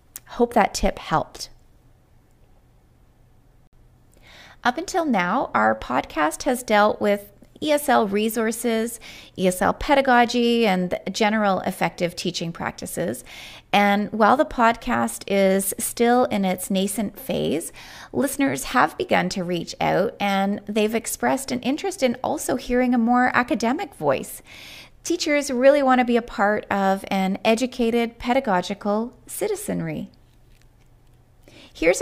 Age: 30-49